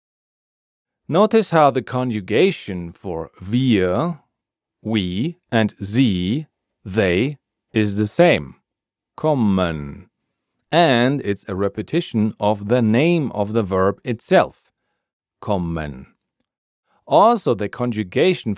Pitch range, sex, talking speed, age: 100-135 Hz, male, 95 wpm, 40-59